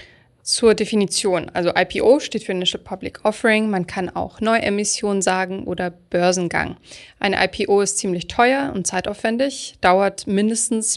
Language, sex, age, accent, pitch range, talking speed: German, female, 20-39, German, 180-210 Hz, 135 wpm